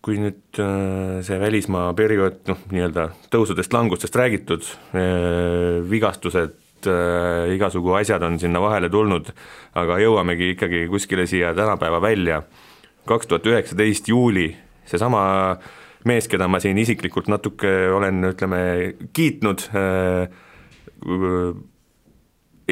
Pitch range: 90-105 Hz